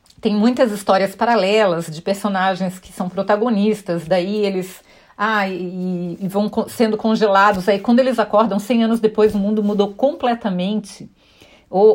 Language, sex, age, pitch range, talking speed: Portuguese, female, 40-59, 205-240 Hz, 145 wpm